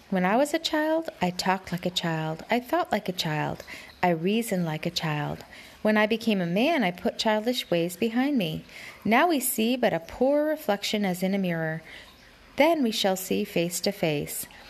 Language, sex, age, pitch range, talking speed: English, female, 30-49, 180-260 Hz, 200 wpm